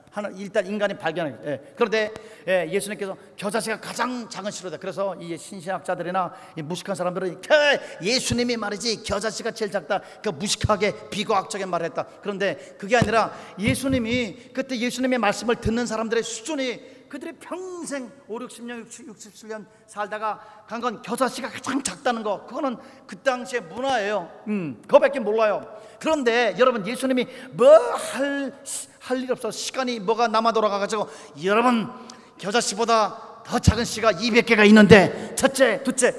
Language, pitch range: Korean, 195-245 Hz